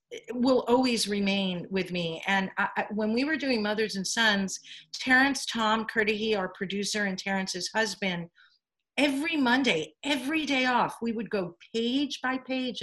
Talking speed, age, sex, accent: 150 wpm, 40-59, female, American